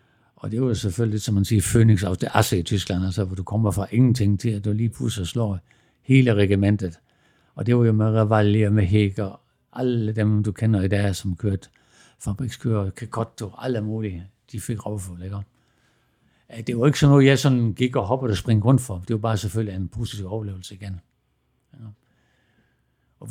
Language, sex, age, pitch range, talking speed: Danish, male, 60-79, 100-120 Hz, 200 wpm